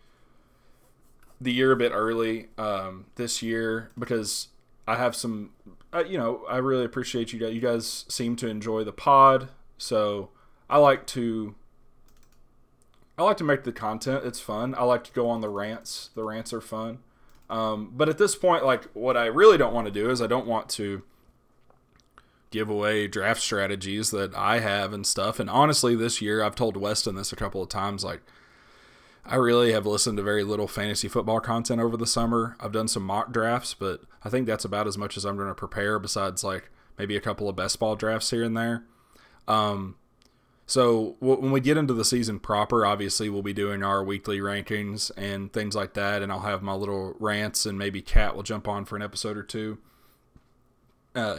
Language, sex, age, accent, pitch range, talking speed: English, male, 20-39, American, 105-120 Hz, 200 wpm